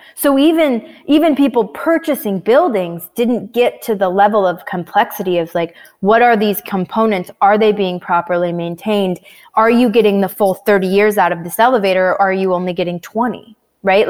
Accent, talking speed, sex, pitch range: American, 180 wpm, female, 180-220 Hz